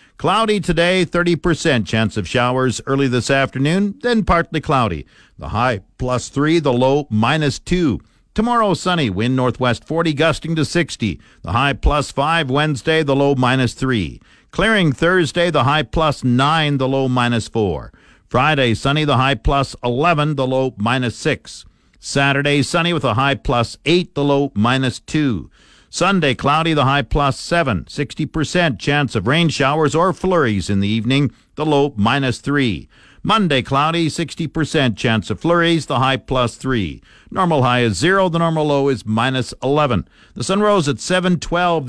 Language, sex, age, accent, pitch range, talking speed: English, male, 50-69, American, 125-160 Hz, 160 wpm